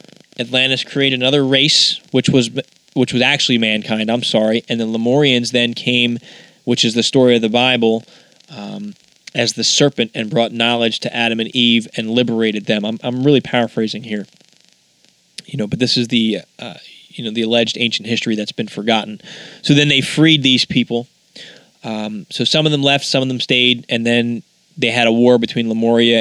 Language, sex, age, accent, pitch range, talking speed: English, male, 20-39, American, 115-130 Hz, 190 wpm